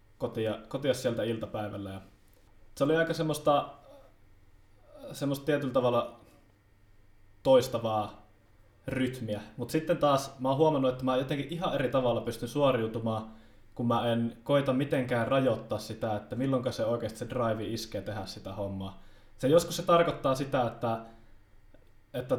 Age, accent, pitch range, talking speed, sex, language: 20-39, native, 110-130 Hz, 135 wpm, male, Finnish